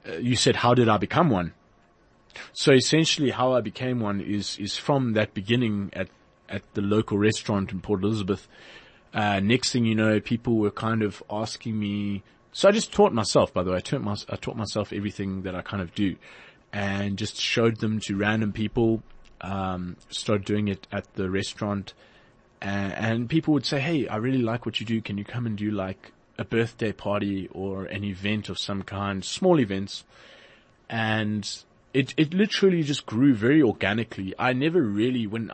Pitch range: 100-120 Hz